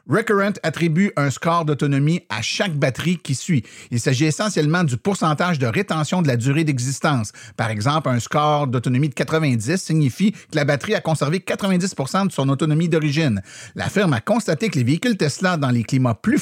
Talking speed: 185 wpm